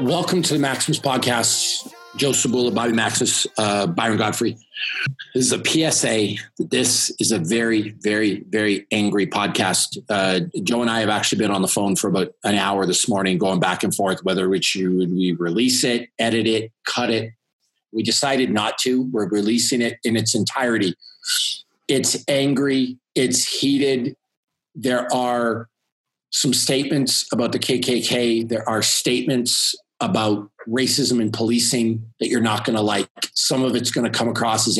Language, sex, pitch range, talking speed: English, male, 110-130 Hz, 165 wpm